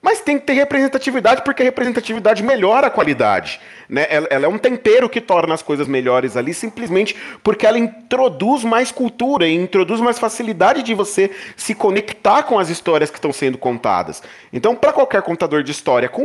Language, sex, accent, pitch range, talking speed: Portuguese, male, Brazilian, 150-240 Hz, 190 wpm